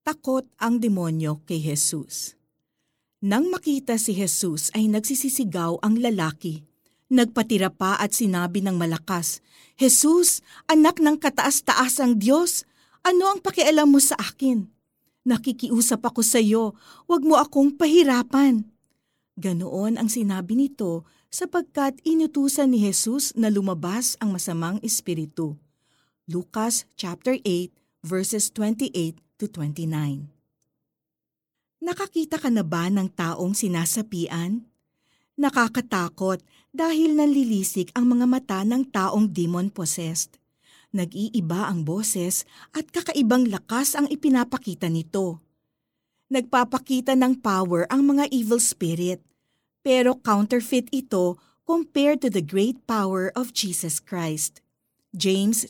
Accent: native